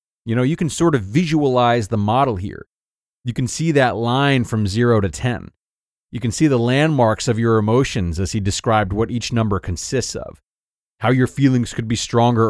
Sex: male